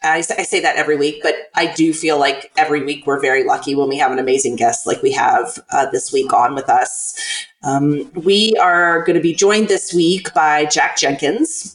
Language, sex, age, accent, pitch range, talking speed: English, female, 30-49, American, 155-210 Hz, 215 wpm